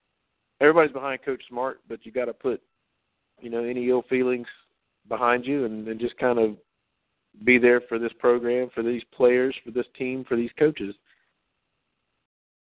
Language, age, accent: English, 50-69, American